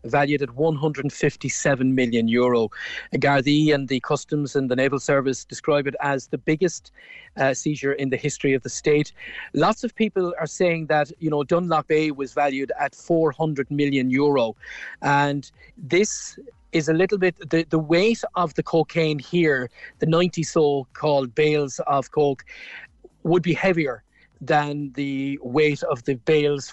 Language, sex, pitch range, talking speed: English, male, 140-160 Hz, 155 wpm